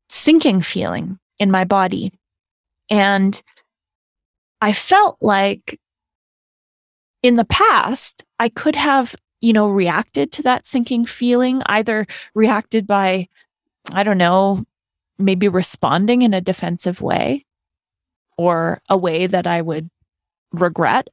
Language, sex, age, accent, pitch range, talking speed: English, female, 20-39, American, 180-215 Hz, 115 wpm